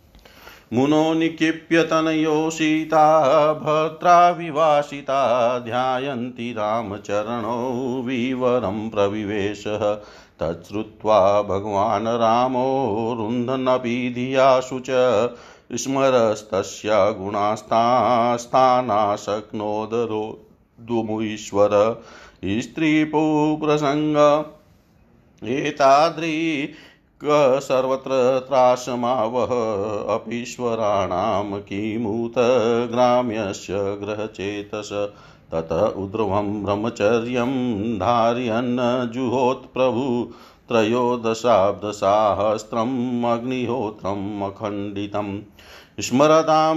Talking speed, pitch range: 35 wpm, 105-140 Hz